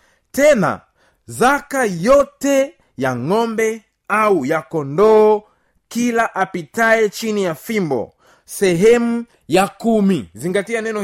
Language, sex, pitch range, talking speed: Swahili, male, 165-230 Hz, 100 wpm